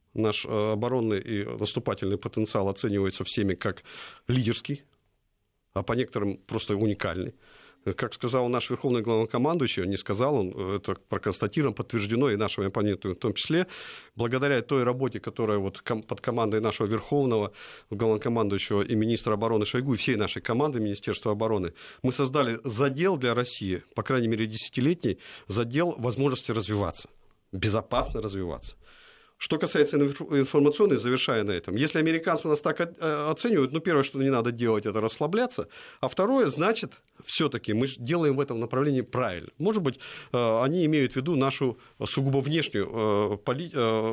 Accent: native